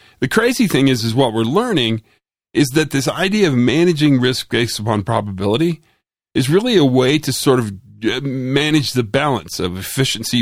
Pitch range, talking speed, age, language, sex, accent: 110-155 Hz, 175 wpm, 40-59, English, male, American